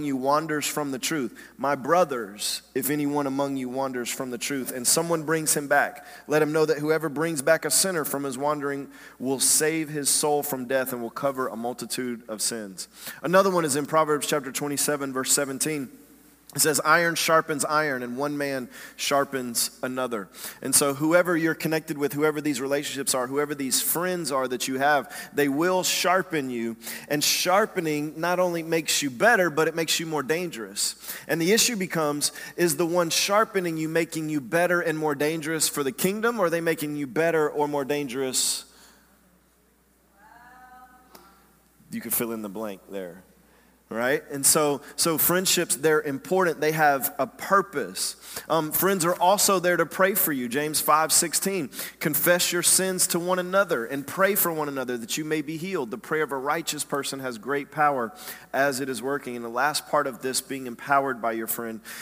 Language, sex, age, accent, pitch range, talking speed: English, male, 30-49, American, 135-165 Hz, 190 wpm